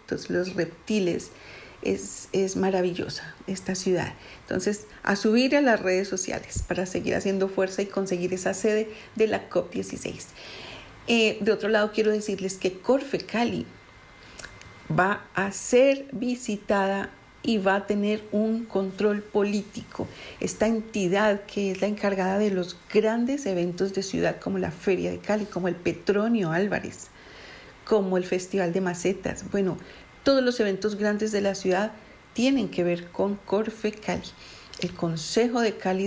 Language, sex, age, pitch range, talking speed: Spanish, female, 40-59, 185-215 Hz, 150 wpm